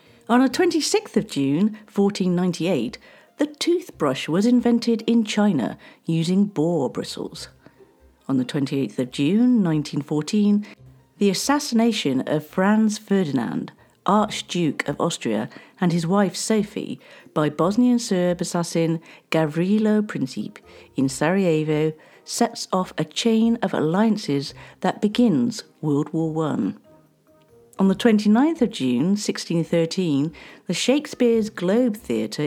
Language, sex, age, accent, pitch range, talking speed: English, female, 50-69, British, 155-230 Hz, 115 wpm